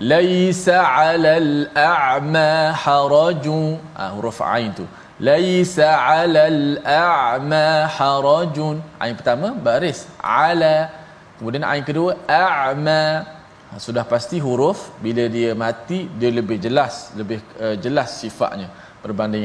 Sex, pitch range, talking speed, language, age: male, 130-175 Hz, 100 wpm, Malayalam, 20-39